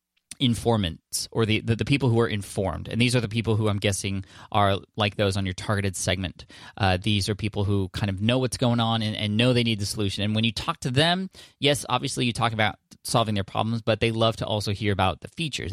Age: 20-39